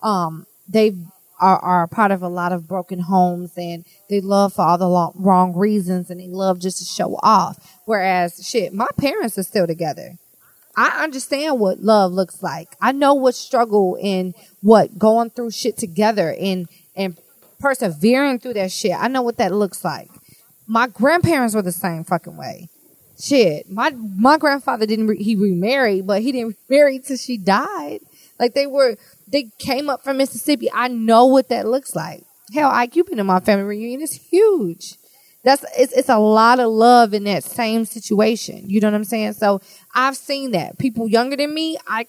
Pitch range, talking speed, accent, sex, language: 185-250 Hz, 190 wpm, American, female, English